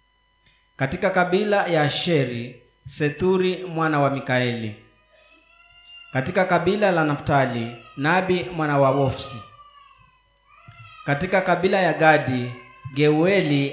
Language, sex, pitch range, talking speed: Swahili, male, 130-180 Hz, 90 wpm